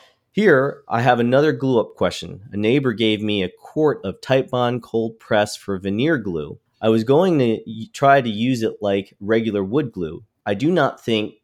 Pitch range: 95-115 Hz